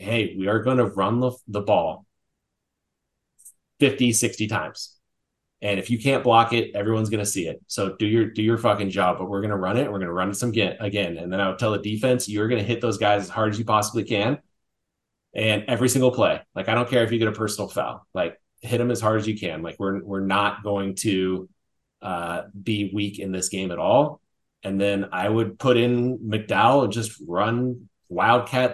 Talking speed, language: 230 wpm, English